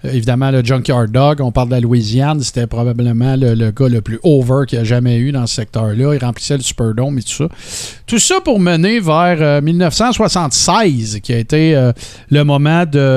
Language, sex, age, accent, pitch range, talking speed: French, male, 50-69, Canadian, 120-165 Hz, 215 wpm